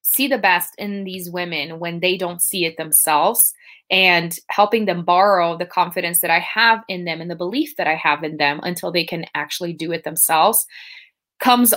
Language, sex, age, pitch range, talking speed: English, female, 20-39, 165-205 Hz, 200 wpm